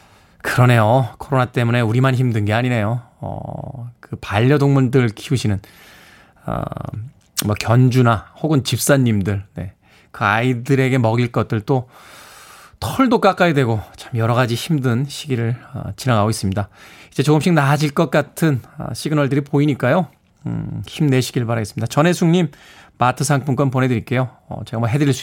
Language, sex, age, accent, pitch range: Korean, male, 20-39, native, 115-170 Hz